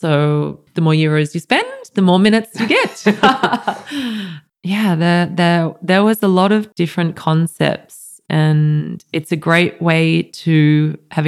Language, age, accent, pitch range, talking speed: English, 20-39, Australian, 145-165 Hz, 150 wpm